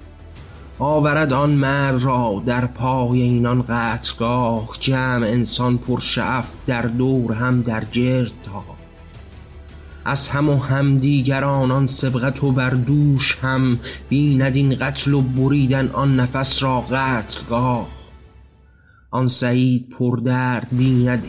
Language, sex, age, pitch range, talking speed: Persian, male, 30-49, 115-135 Hz, 115 wpm